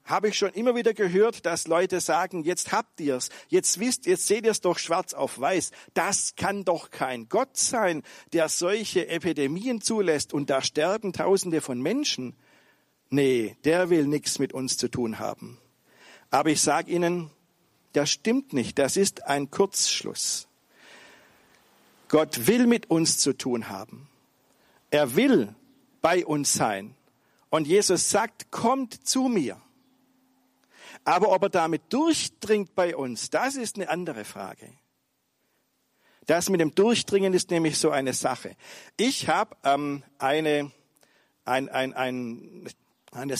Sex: male